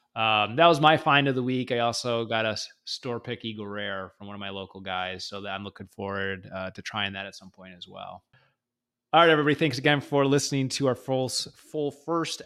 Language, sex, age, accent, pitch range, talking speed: English, male, 30-49, American, 115-135 Hz, 225 wpm